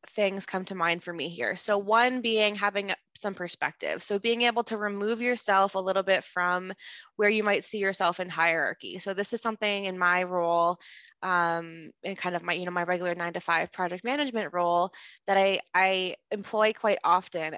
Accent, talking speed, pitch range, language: American, 200 wpm, 180-210 Hz, English